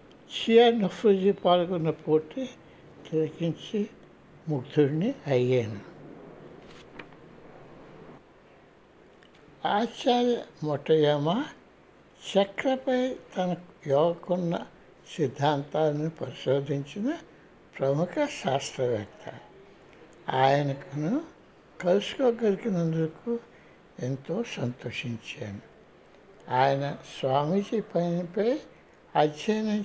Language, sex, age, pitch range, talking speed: Telugu, male, 60-79, 150-215 Hz, 50 wpm